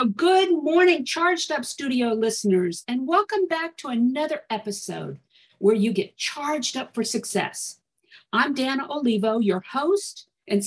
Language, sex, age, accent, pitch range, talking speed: English, female, 50-69, American, 205-300 Hz, 140 wpm